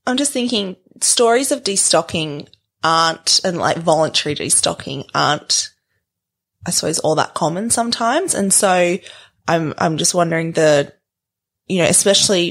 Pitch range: 150-180 Hz